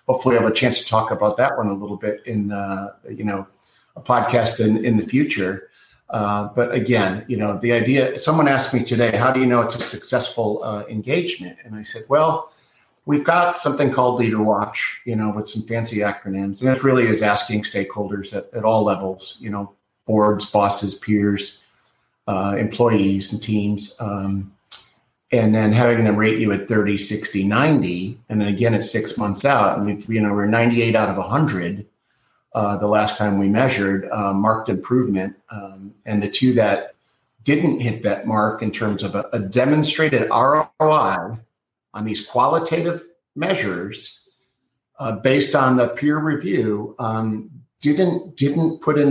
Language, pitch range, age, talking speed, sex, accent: English, 105-125 Hz, 50-69, 175 wpm, male, American